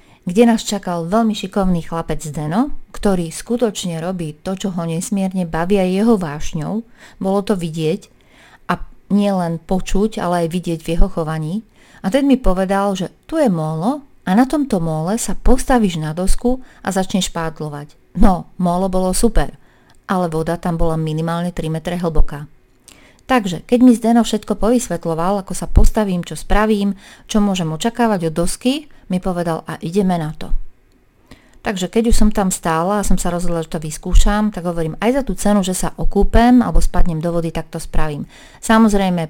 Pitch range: 170-215 Hz